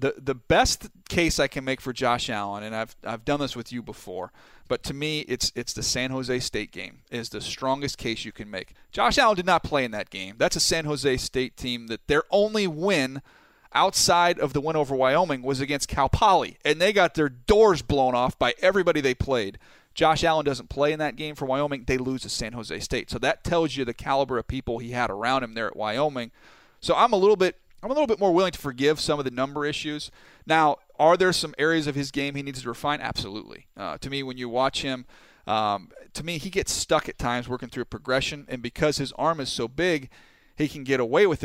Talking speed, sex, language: 240 wpm, male, English